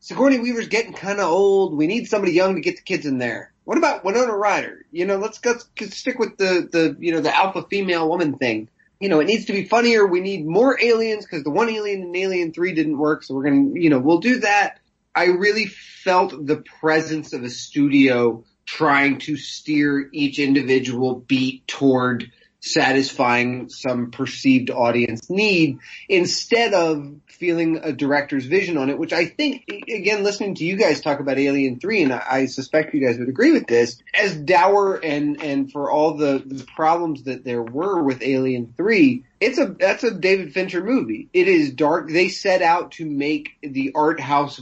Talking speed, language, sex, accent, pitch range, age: 195 wpm, English, male, American, 135-190 Hz, 30-49